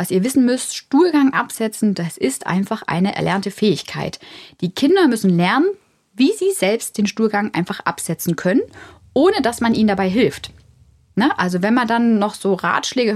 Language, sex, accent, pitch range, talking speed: German, female, German, 175-235 Hz, 175 wpm